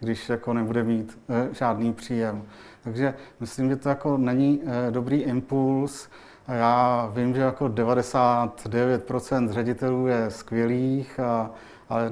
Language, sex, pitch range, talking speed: Czech, male, 115-120 Hz, 115 wpm